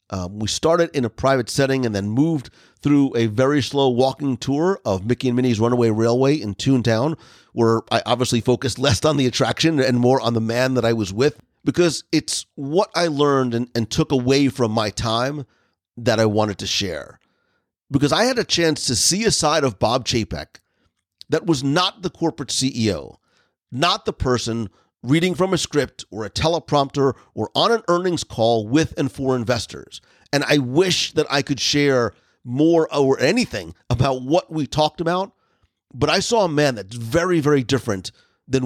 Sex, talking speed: male, 185 wpm